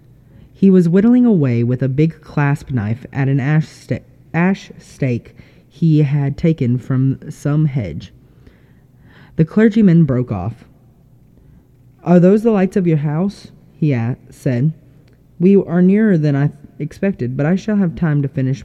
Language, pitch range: English, 125-180 Hz